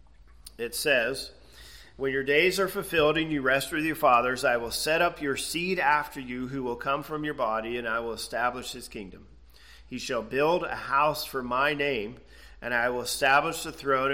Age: 40-59